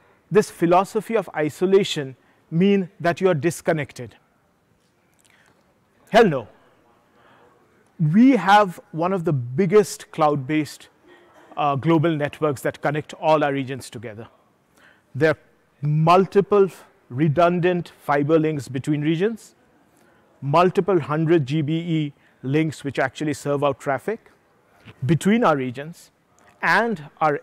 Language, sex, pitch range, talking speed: English, male, 145-190 Hz, 105 wpm